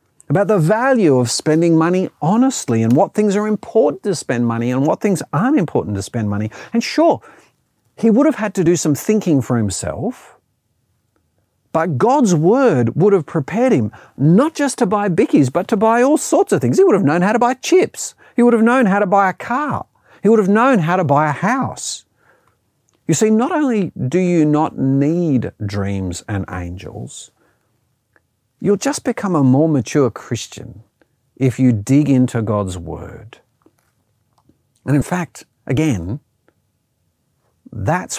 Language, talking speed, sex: English, 170 wpm, male